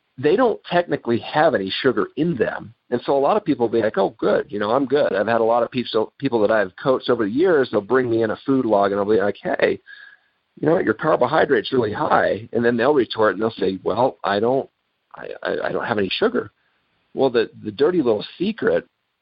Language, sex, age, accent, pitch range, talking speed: English, male, 50-69, American, 100-135 Hz, 240 wpm